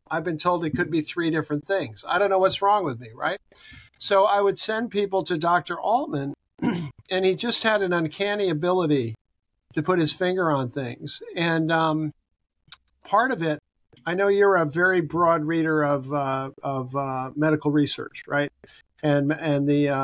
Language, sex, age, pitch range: English, male, 50-69, 145-180 Hz